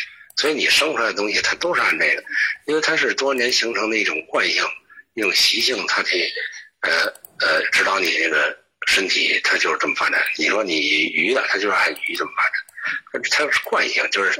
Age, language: 60-79, Chinese